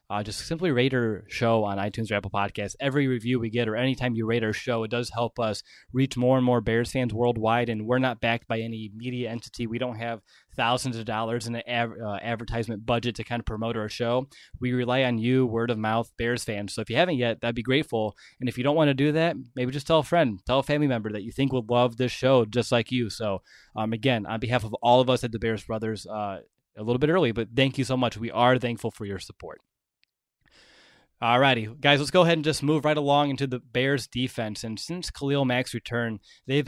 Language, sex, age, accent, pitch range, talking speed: English, male, 20-39, American, 115-135 Hz, 250 wpm